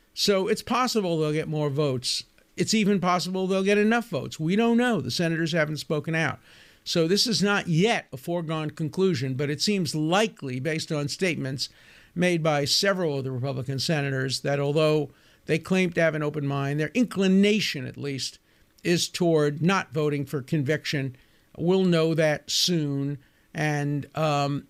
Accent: American